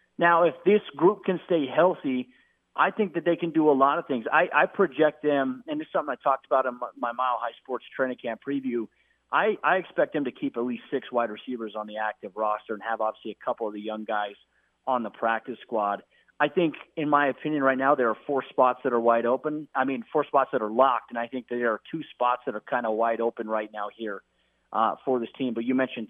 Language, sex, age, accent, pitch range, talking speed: English, male, 30-49, American, 115-140 Hz, 250 wpm